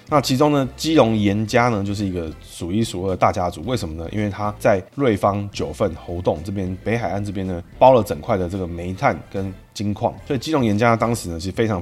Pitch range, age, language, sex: 90-115 Hz, 20-39, Chinese, male